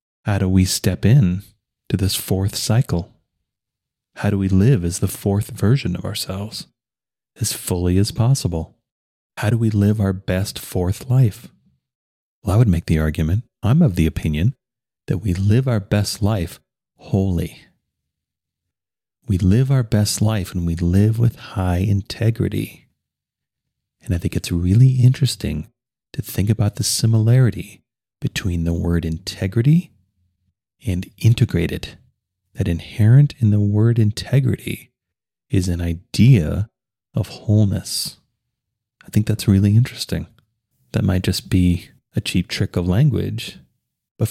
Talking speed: 140 wpm